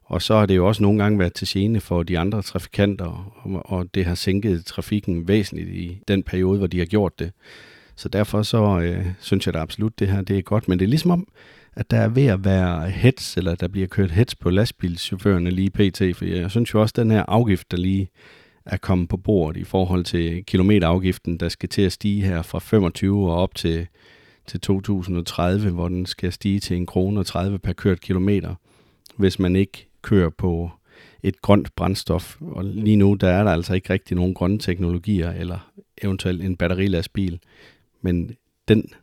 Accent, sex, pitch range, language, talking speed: native, male, 90-105 Hz, Danish, 205 wpm